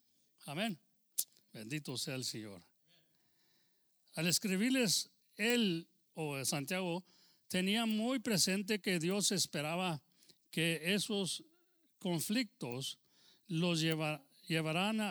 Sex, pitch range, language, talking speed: male, 155-210 Hz, English, 85 wpm